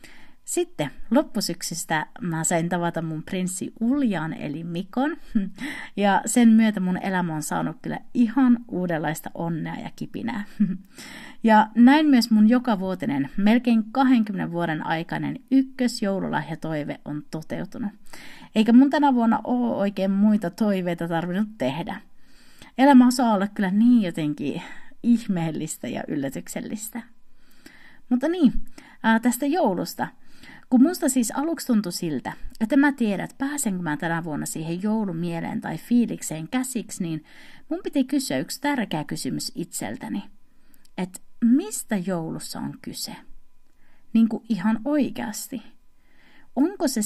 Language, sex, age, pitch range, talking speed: Finnish, female, 30-49, 175-255 Hz, 120 wpm